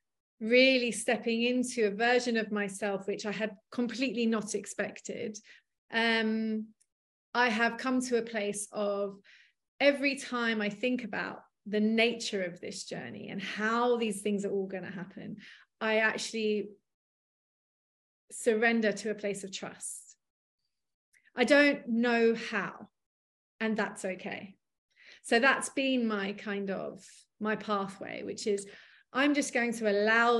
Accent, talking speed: British, 140 wpm